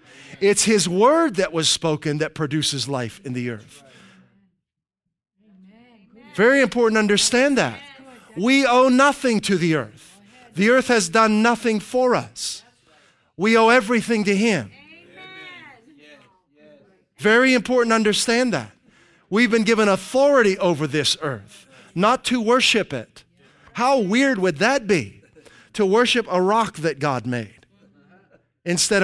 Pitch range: 155-230 Hz